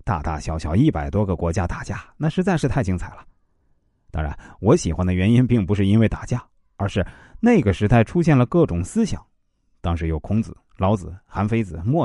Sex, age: male, 30-49